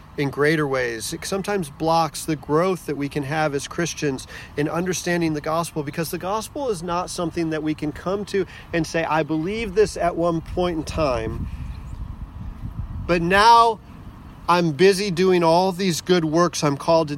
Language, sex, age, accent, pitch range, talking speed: English, male, 40-59, American, 150-190 Hz, 180 wpm